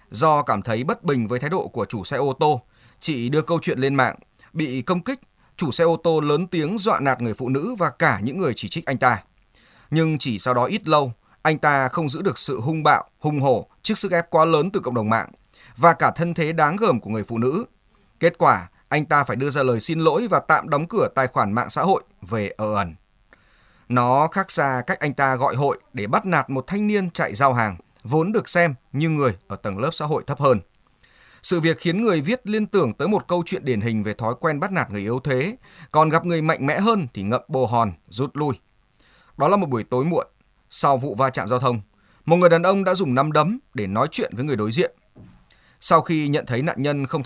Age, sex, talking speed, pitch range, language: 20-39, male, 245 wpm, 125-170 Hz, Vietnamese